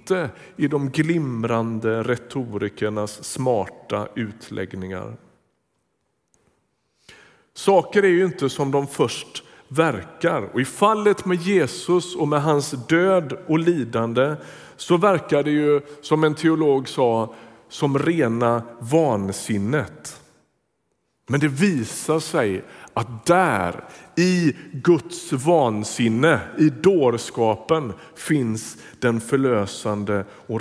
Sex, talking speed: male, 100 wpm